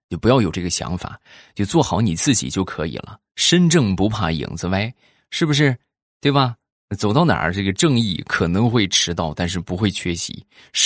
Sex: male